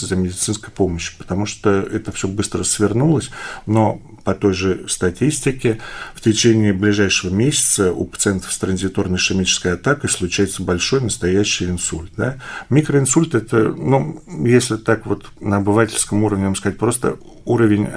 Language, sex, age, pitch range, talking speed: Russian, male, 40-59, 95-115 Hz, 135 wpm